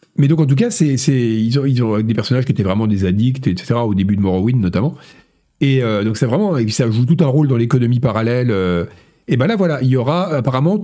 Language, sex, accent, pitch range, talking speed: French, male, French, 110-160 Hz, 265 wpm